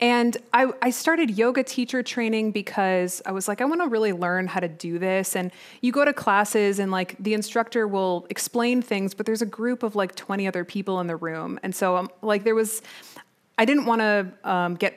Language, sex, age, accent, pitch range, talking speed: English, female, 20-39, American, 185-235 Hz, 220 wpm